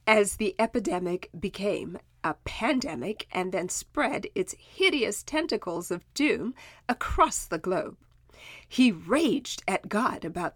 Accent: American